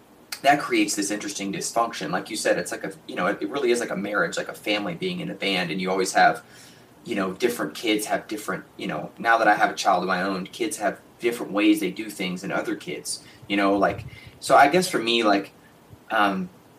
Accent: American